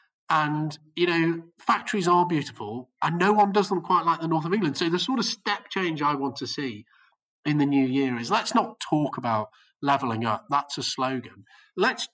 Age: 40-59